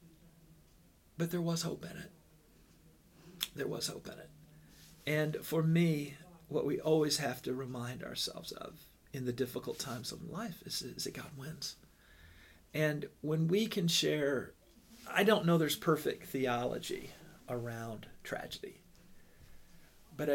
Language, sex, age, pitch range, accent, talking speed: English, male, 50-69, 125-160 Hz, American, 140 wpm